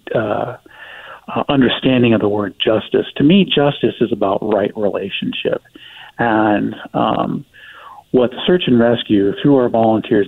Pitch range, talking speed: 105-120 Hz, 135 wpm